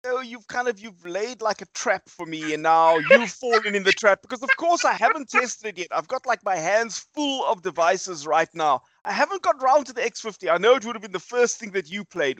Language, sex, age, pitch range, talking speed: English, male, 30-49, 150-225 Hz, 265 wpm